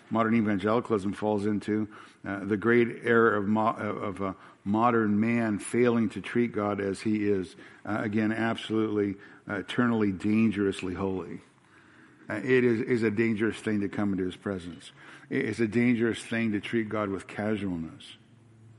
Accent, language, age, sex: American, English, 60-79, male